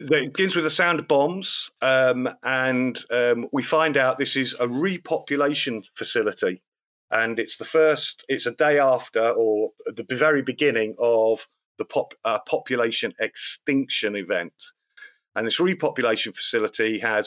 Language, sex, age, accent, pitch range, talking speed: English, male, 40-59, British, 110-145 Hz, 145 wpm